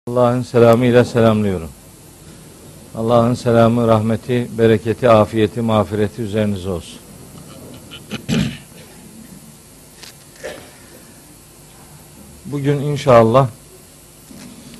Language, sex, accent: Turkish, male, native